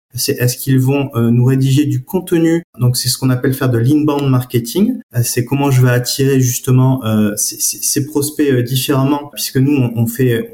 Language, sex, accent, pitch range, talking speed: French, male, French, 120-140 Hz, 170 wpm